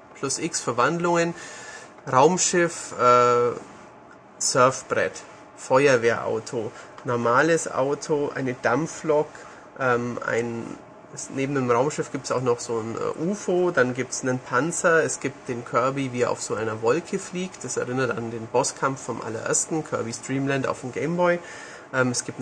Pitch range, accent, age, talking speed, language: 120-150 Hz, German, 30-49, 150 wpm, German